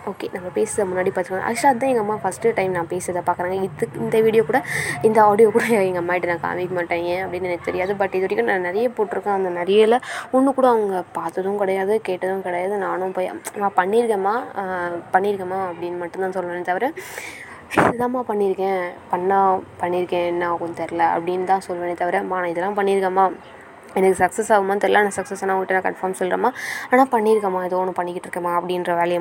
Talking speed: 175 wpm